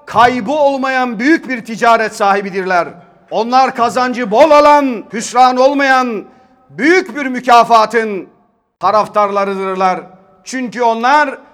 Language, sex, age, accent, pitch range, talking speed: Turkish, male, 40-59, native, 190-255 Hz, 95 wpm